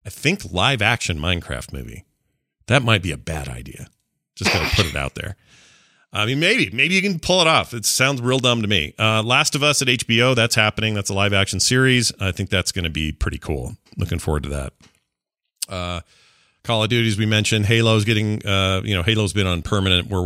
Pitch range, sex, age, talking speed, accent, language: 85-115 Hz, male, 40-59, 220 wpm, American, English